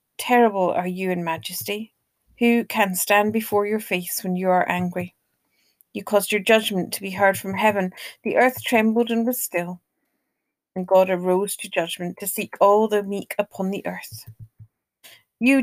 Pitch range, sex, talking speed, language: 185-230 Hz, female, 170 wpm, English